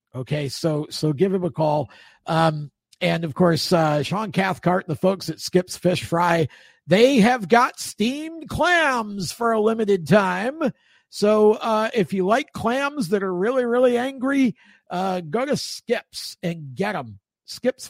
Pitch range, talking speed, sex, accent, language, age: 155-220 Hz, 160 wpm, male, American, English, 50-69